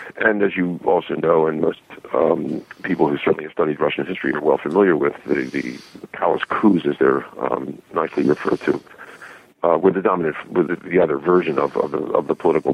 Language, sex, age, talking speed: English, male, 50-69, 205 wpm